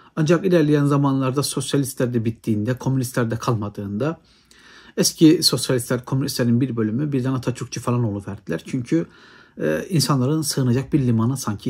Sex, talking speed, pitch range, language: male, 130 wpm, 115-150 Hz, Turkish